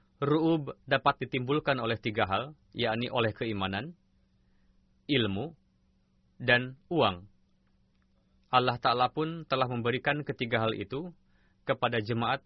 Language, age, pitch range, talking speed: Indonesian, 20-39, 100-135 Hz, 105 wpm